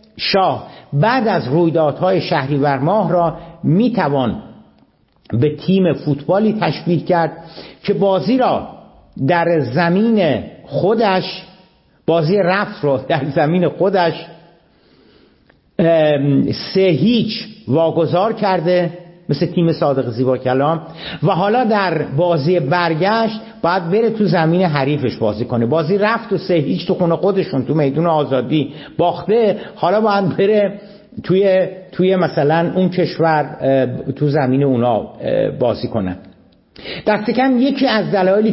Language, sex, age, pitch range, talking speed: Persian, male, 50-69, 145-195 Hz, 115 wpm